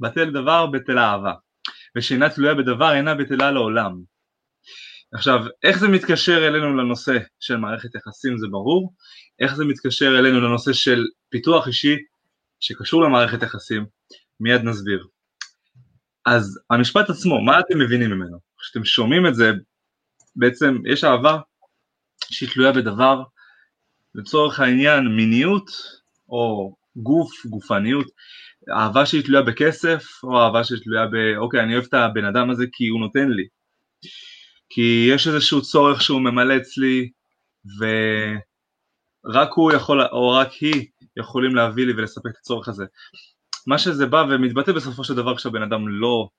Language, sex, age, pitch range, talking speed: Hebrew, male, 20-39, 115-140 Hz, 135 wpm